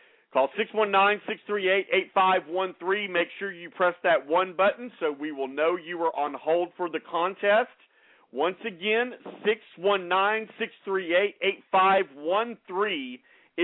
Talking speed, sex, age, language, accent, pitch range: 100 wpm, male, 50-69, English, American, 155-205 Hz